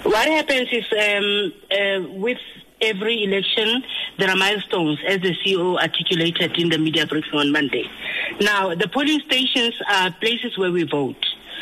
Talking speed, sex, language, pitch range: 155 wpm, female, English, 185-235 Hz